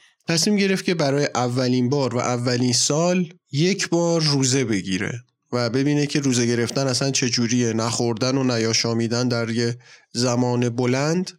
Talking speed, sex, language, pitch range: 140 wpm, male, Persian, 125-170 Hz